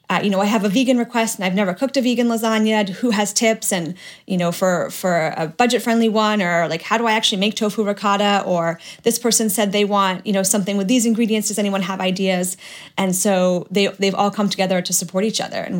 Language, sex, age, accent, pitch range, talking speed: English, female, 30-49, American, 185-210 Hz, 240 wpm